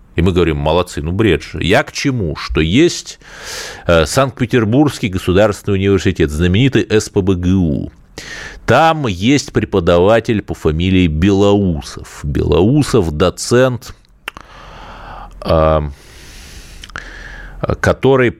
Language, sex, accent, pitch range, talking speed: Russian, male, native, 80-105 Hz, 85 wpm